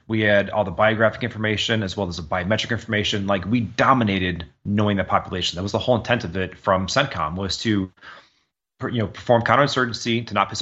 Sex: male